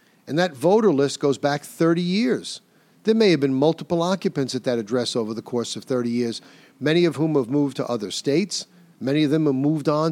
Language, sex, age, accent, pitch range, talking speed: English, male, 50-69, American, 125-165 Hz, 220 wpm